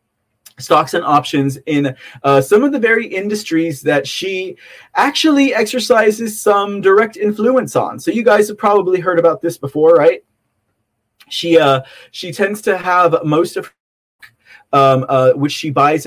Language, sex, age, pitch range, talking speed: English, male, 30-49, 140-195 Hz, 155 wpm